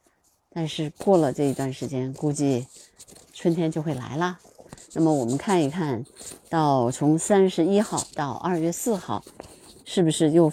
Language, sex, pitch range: Chinese, female, 140-180 Hz